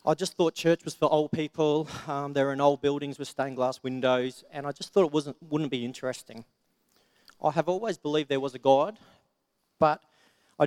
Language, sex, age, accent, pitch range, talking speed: English, male, 40-59, Australian, 130-155 Hz, 210 wpm